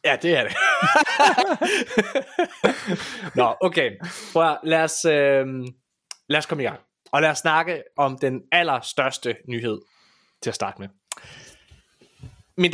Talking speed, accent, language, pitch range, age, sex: 125 wpm, native, Danish, 125-175 Hz, 20-39, male